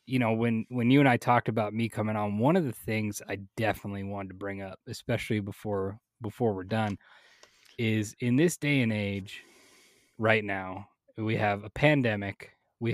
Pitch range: 110-135 Hz